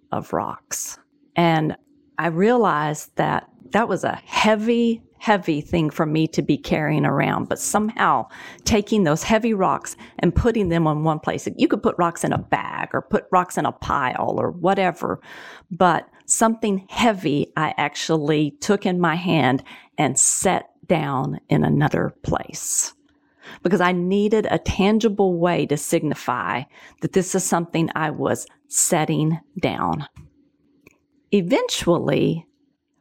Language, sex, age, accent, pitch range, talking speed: English, female, 40-59, American, 160-230 Hz, 140 wpm